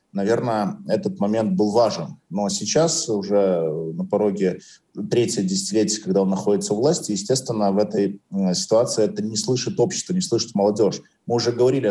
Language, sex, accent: Russian, male, native